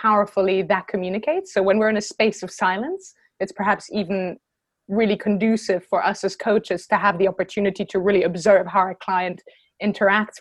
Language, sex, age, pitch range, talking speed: English, female, 20-39, 190-210 Hz, 180 wpm